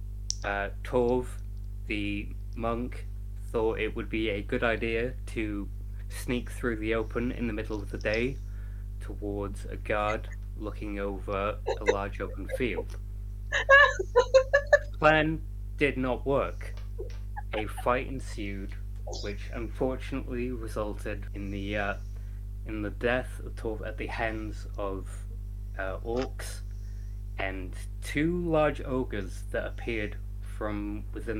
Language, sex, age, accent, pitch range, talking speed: English, male, 20-39, British, 100-110 Hz, 120 wpm